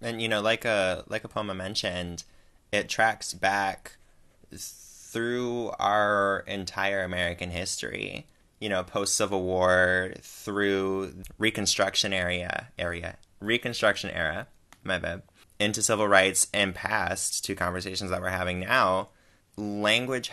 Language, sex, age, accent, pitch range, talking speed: English, male, 20-39, American, 90-100 Hz, 125 wpm